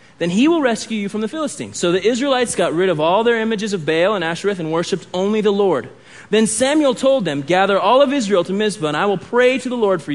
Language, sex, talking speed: English, male, 260 wpm